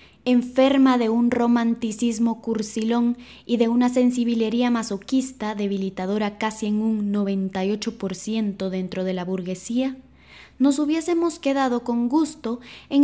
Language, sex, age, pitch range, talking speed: Spanish, female, 20-39, 205-255 Hz, 115 wpm